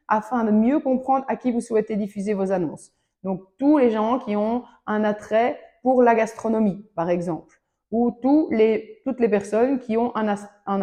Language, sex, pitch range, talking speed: French, female, 210-255 Hz, 190 wpm